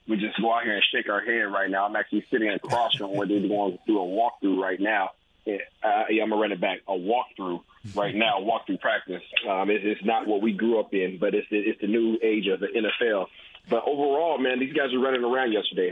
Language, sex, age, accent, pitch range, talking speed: English, male, 30-49, American, 100-110 Hz, 240 wpm